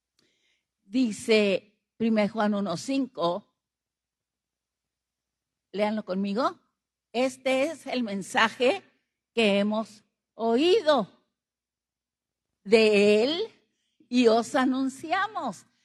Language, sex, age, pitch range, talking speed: Spanish, female, 50-69, 230-315 Hz, 70 wpm